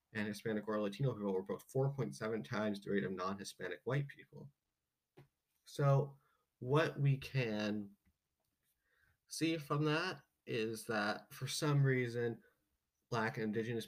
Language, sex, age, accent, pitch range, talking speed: English, male, 20-39, American, 100-135 Hz, 130 wpm